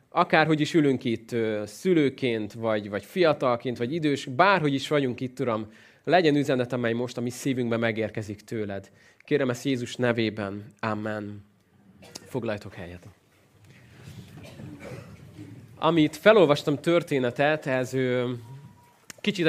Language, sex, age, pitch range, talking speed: Hungarian, male, 20-39, 120-155 Hz, 110 wpm